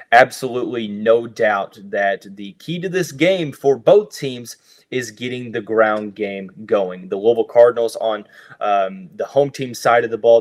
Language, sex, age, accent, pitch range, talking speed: English, male, 30-49, American, 105-140 Hz, 175 wpm